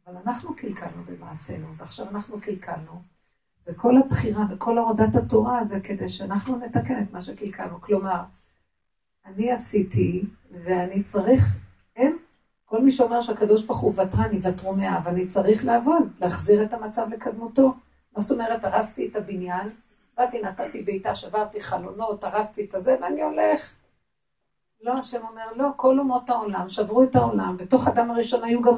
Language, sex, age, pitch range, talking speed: Hebrew, female, 50-69, 195-245 Hz, 150 wpm